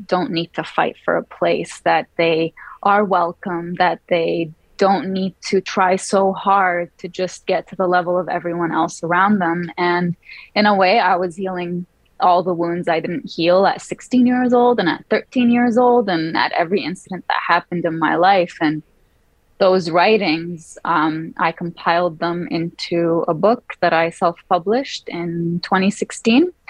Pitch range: 170-195 Hz